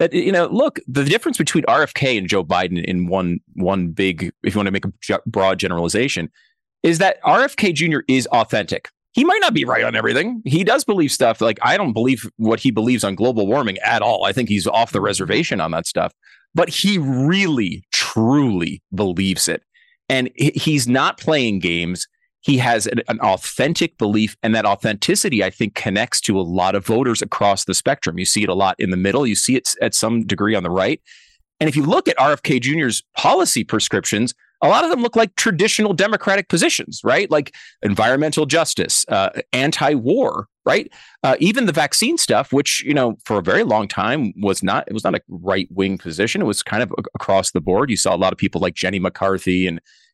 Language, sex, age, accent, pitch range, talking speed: English, male, 30-49, American, 95-160 Hz, 205 wpm